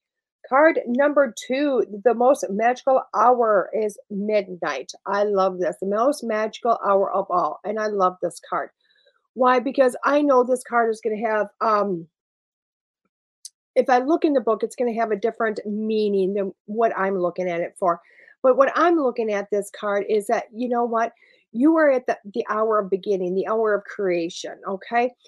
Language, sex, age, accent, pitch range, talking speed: English, female, 50-69, American, 200-265 Hz, 185 wpm